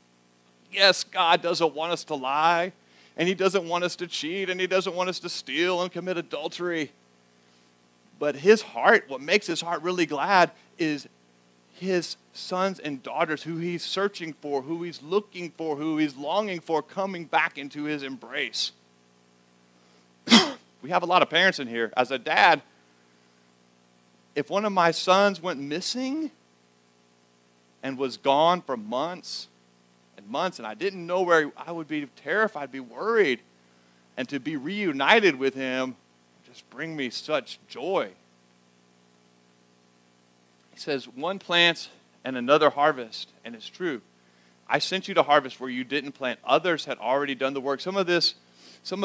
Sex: male